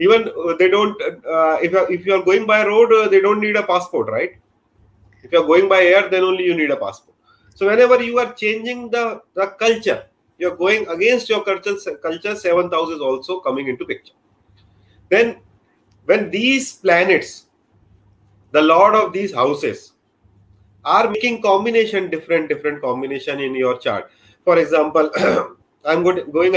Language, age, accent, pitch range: Hindi, 30-49, native, 125-205 Hz